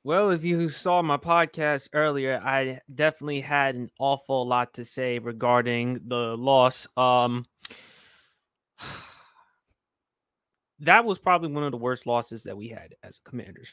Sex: male